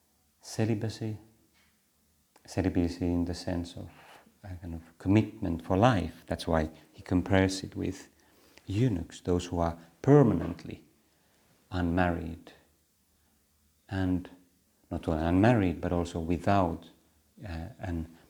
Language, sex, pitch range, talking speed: Finnish, male, 85-105 Hz, 110 wpm